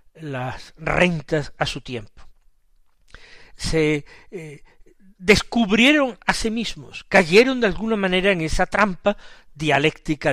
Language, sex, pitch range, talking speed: Spanish, male, 150-225 Hz, 110 wpm